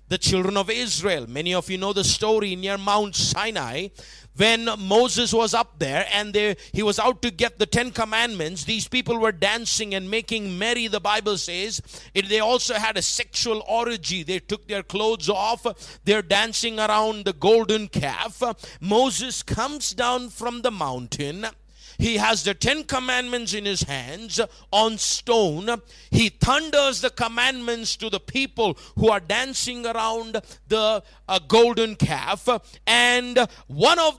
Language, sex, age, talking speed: English, male, 50-69, 160 wpm